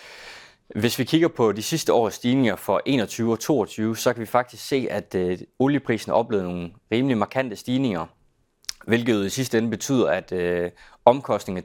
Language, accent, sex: Danish, native, male